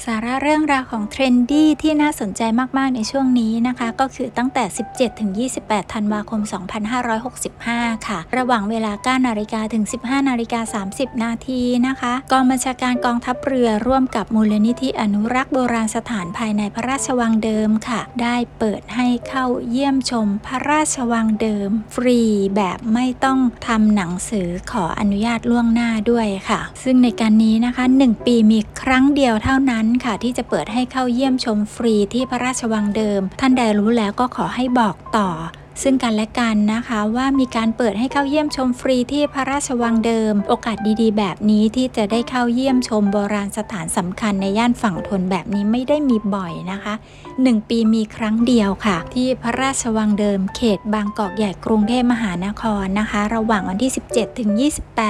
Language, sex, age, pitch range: Thai, female, 60-79, 215-255 Hz